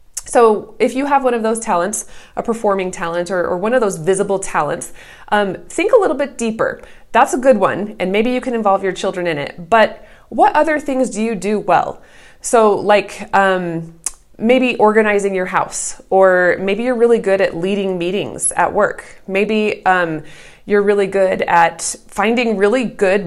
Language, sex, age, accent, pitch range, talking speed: English, female, 20-39, American, 185-245 Hz, 180 wpm